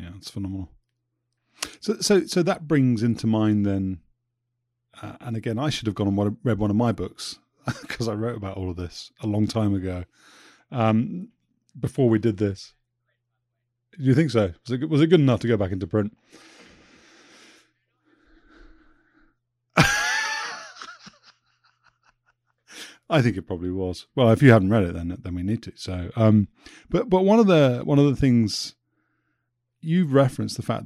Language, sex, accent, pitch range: English, male, British, 100-125 Hz